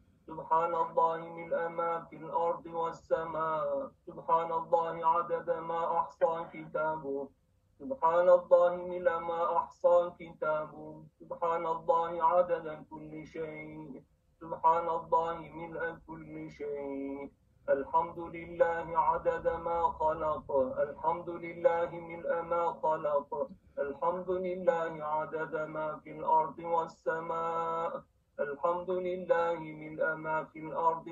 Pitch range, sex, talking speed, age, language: 155-180 Hz, male, 100 wpm, 50-69, Turkish